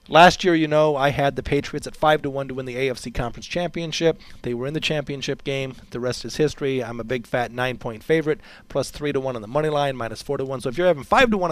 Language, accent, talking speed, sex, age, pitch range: English, American, 270 wpm, male, 40-59, 130-165 Hz